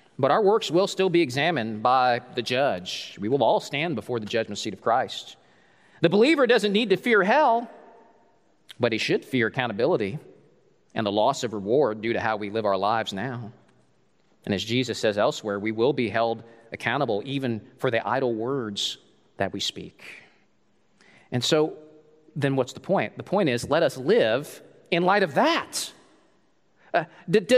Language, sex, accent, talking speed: English, male, American, 175 wpm